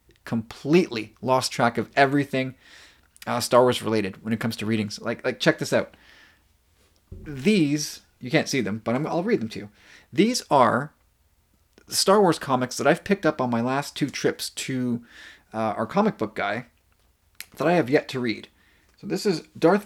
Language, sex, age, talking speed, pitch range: English, male, 30-49, 185 wpm, 105-165 Hz